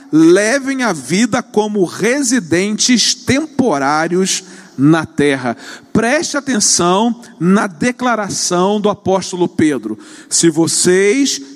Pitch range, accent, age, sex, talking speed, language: 175-275 Hz, Brazilian, 40-59, male, 90 wpm, Portuguese